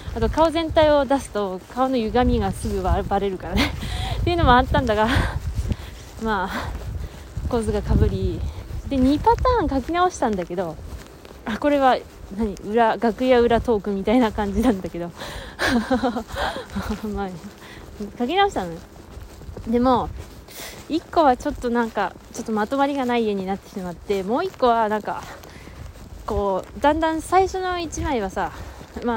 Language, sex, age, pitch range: Japanese, female, 20-39, 195-275 Hz